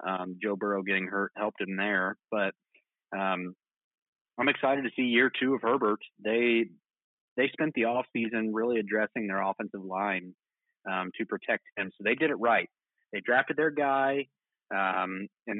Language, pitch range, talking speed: English, 105-125 Hz, 170 wpm